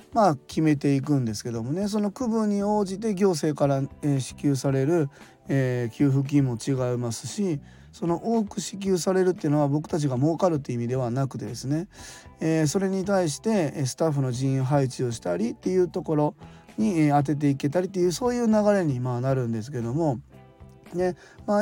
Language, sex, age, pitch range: Japanese, male, 20-39, 130-175 Hz